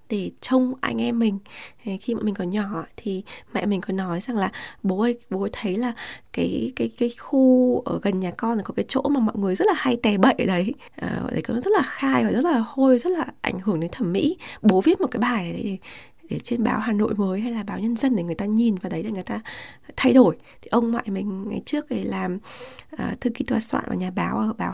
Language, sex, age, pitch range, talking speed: Vietnamese, female, 20-39, 195-250 Hz, 255 wpm